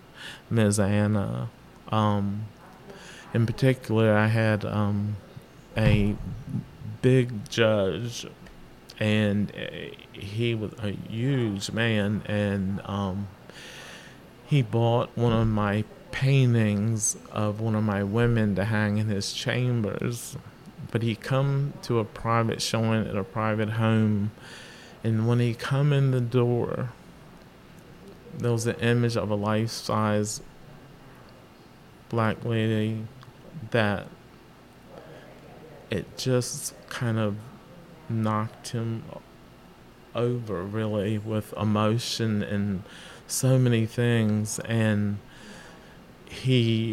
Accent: American